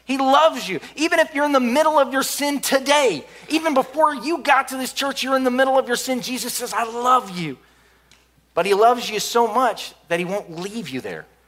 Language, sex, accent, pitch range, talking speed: English, male, American, 185-245 Hz, 230 wpm